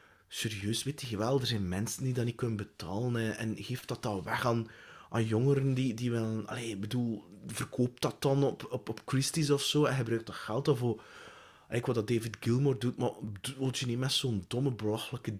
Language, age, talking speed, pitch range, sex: English, 20-39, 210 wpm, 110-145 Hz, male